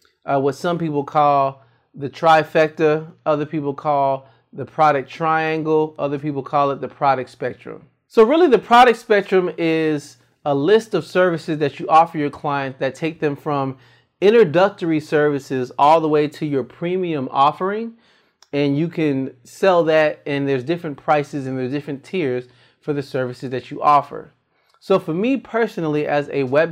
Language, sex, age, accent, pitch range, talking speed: English, male, 30-49, American, 135-160 Hz, 165 wpm